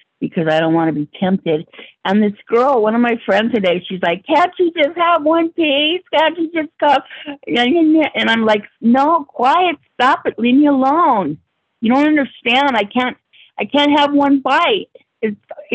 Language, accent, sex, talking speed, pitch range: English, American, female, 185 wpm, 175-265 Hz